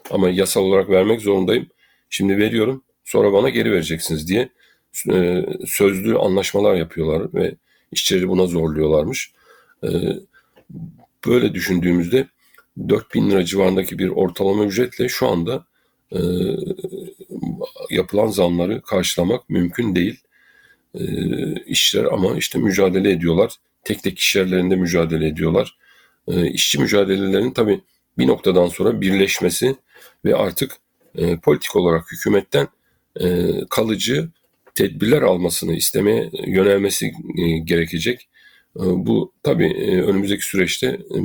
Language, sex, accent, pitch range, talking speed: Turkish, male, native, 90-100 Hz, 105 wpm